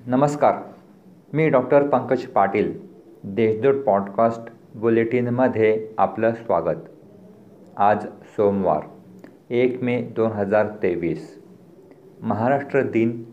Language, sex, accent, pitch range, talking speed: Marathi, male, native, 105-125 Hz, 85 wpm